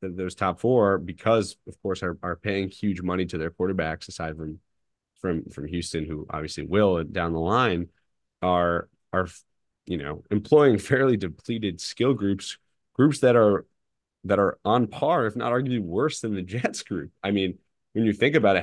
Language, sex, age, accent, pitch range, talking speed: English, male, 30-49, American, 80-100 Hz, 180 wpm